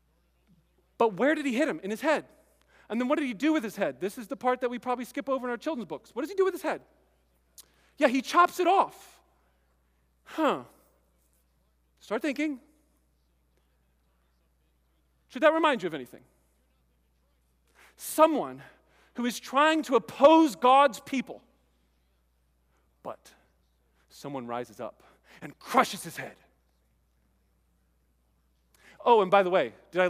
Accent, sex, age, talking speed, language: American, male, 40-59, 150 wpm, English